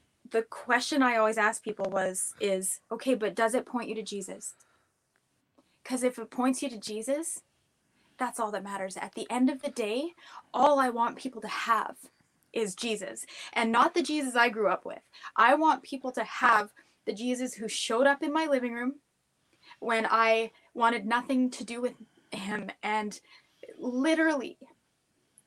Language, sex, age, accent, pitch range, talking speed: English, female, 20-39, American, 225-275 Hz, 170 wpm